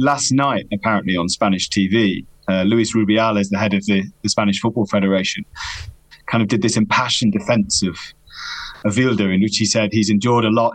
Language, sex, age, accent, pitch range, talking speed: English, male, 30-49, British, 105-125 Hz, 185 wpm